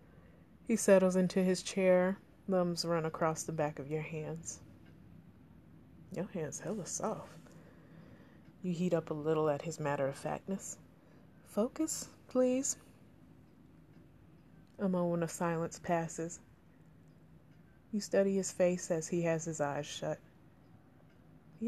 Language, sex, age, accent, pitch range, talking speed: English, female, 30-49, American, 155-180 Hz, 120 wpm